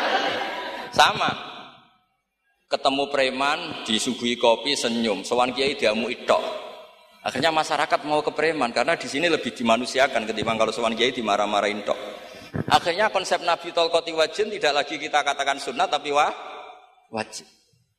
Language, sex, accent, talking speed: Indonesian, male, native, 130 wpm